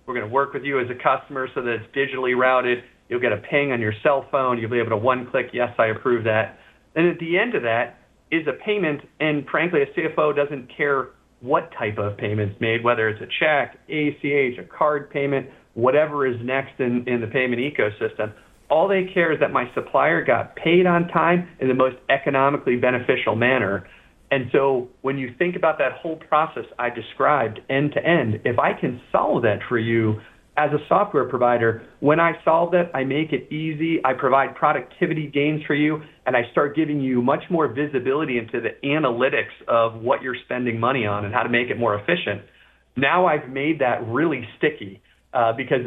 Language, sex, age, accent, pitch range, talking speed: English, male, 40-59, American, 120-150 Hz, 205 wpm